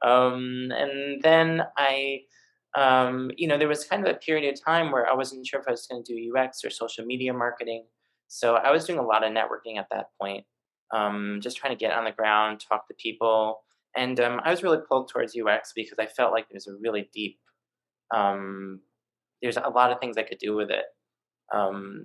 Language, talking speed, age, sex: English, 220 wpm, 20-39, male